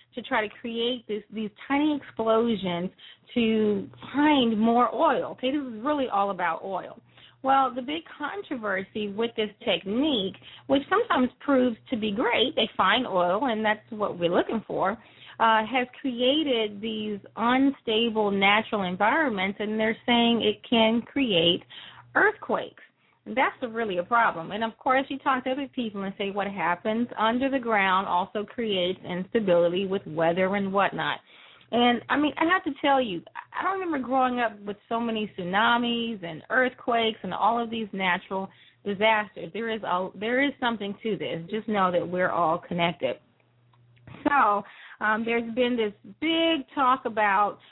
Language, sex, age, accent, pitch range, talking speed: English, female, 30-49, American, 200-250 Hz, 160 wpm